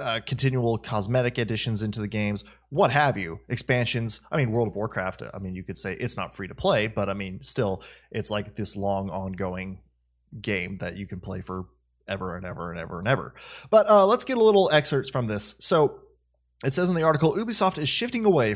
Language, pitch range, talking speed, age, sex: English, 105-140 Hz, 215 wpm, 20-39, male